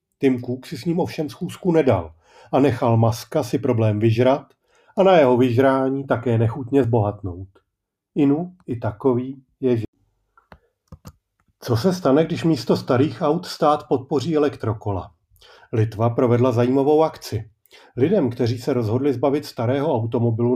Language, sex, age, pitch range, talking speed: Czech, male, 40-59, 115-145 Hz, 135 wpm